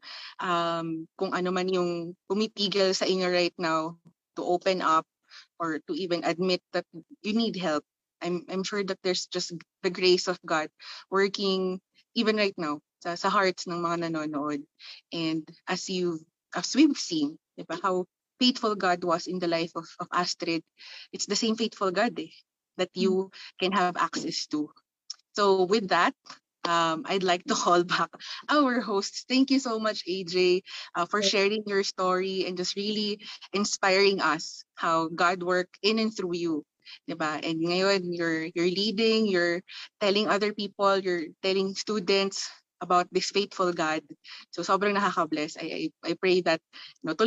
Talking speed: 160 wpm